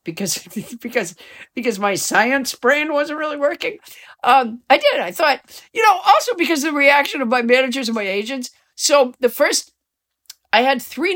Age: 50-69